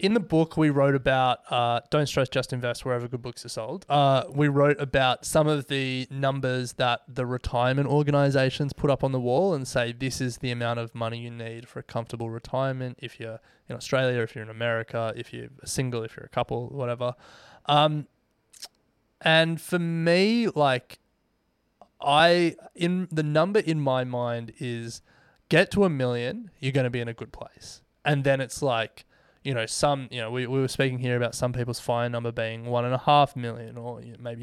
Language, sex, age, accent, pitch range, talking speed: English, male, 20-39, Australian, 120-145 Hz, 200 wpm